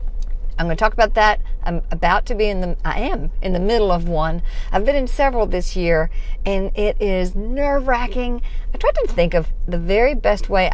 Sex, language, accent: female, English, American